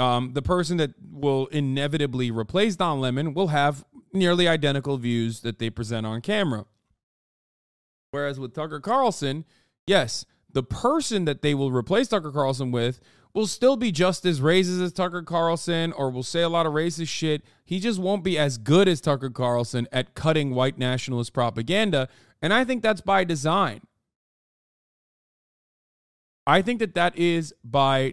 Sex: male